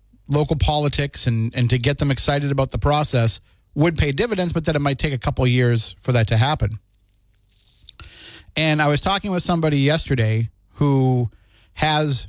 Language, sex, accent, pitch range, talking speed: English, male, American, 105-145 Hz, 175 wpm